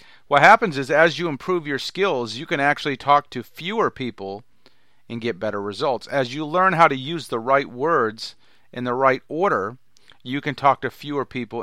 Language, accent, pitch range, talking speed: English, American, 115-140 Hz, 195 wpm